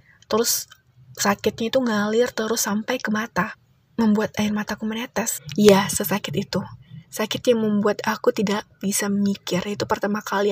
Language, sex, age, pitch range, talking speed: Indonesian, female, 20-39, 195-220 Hz, 145 wpm